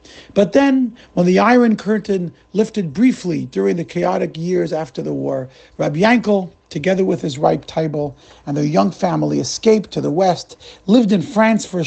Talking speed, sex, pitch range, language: 175 wpm, male, 130-205 Hz, English